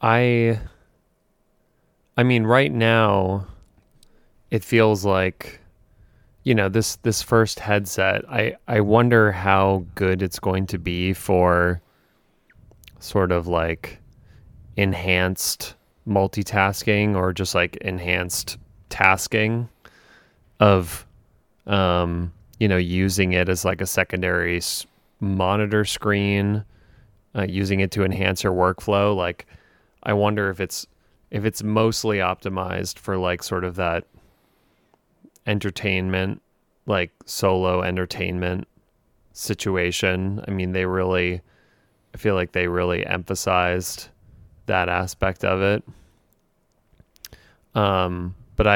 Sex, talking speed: male, 110 wpm